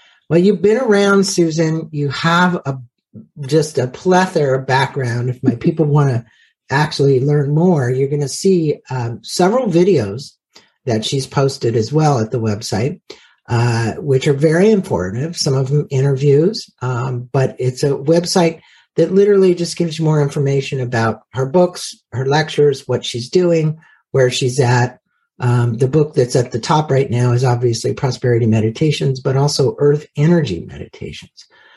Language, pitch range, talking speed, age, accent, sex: English, 130-170 Hz, 160 wpm, 50-69, American, male